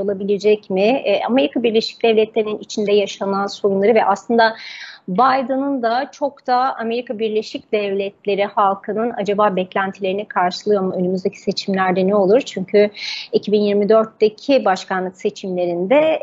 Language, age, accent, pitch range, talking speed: Turkish, 30-49, native, 200-265 Hz, 110 wpm